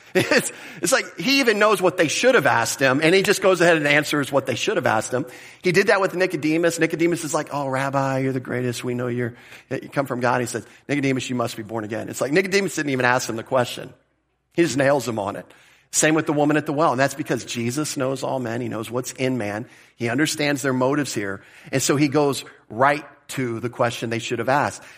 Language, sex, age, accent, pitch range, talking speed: English, male, 40-59, American, 120-155 Hz, 250 wpm